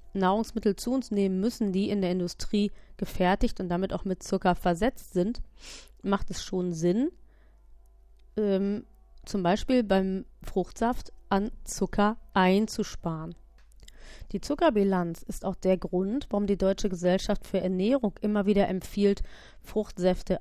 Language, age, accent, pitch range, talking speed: German, 30-49, German, 180-220 Hz, 130 wpm